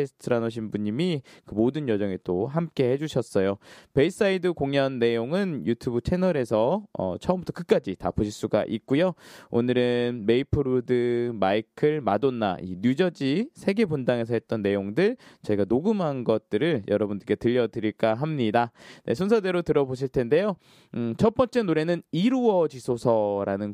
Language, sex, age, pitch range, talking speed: English, male, 20-39, 110-165 Hz, 115 wpm